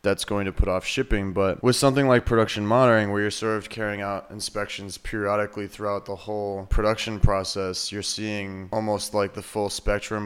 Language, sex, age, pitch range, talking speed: English, male, 20-39, 100-110 Hz, 185 wpm